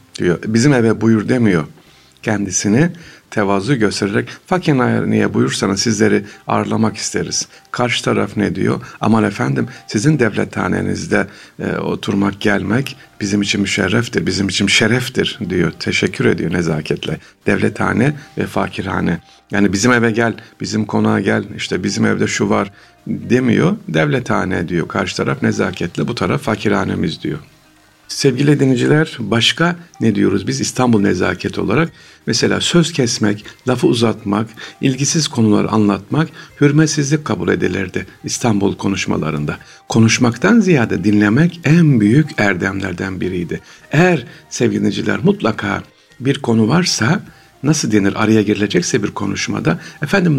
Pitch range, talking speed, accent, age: 105-145 Hz, 120 wpm, native, 50-69